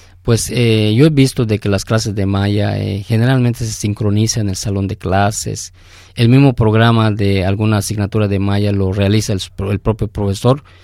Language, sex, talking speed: Spanish, male, 190 wpm